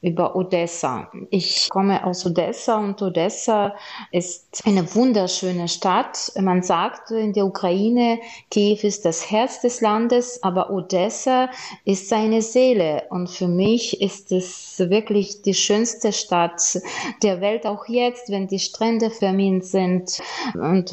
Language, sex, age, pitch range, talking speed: German, female, 30-49, 180-210 Hz, 135 wpm